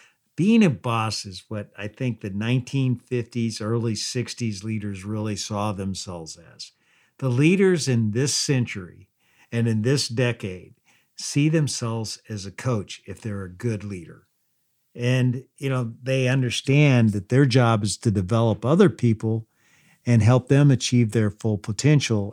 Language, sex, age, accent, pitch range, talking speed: English, male, 50-69, American, 105-130 Hz, 150 wpm